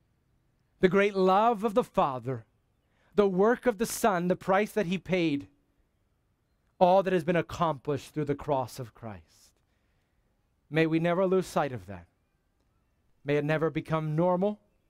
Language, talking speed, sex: English, 155 wpm, male